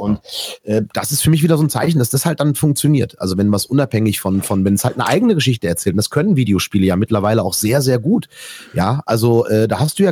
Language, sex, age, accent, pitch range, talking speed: German, male, 30-49, German, 105-145 Hz, 265 wpm